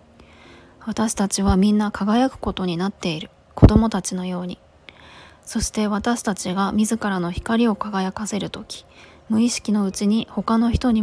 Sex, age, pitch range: female, 20-39, 180-220 Hz